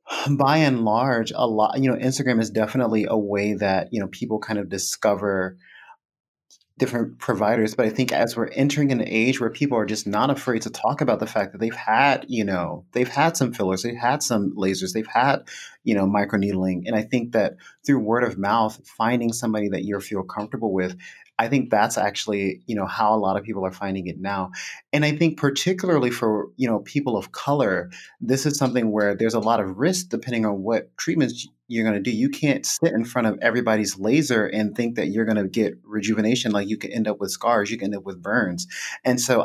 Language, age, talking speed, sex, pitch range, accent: English, 30-49, 220 wpm, male, 105-125 Hz, American